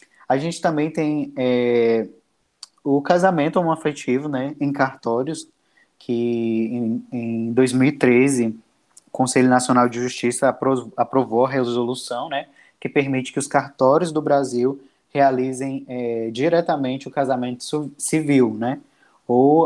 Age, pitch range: 20-39, 125-140 Hz